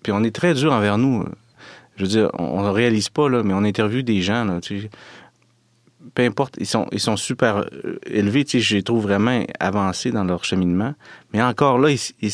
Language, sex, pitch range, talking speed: French, male, 90-115 Hz, 225 wpm